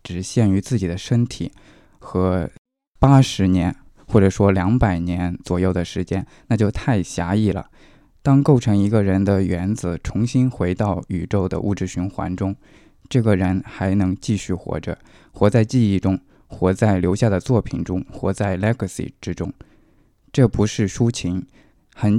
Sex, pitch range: male, 95-120 Hz